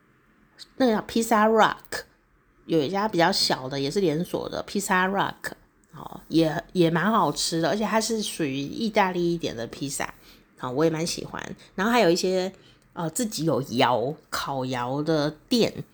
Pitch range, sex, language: 155-205 Hz, female, Chinese